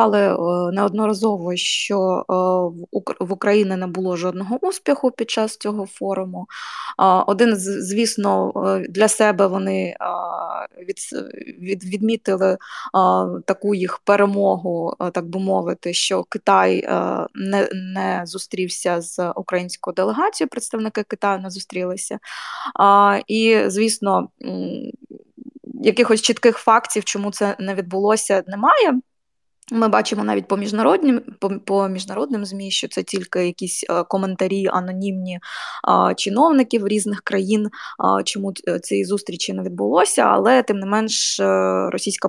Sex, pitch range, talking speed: female, 180-215 Hz, 105 wpm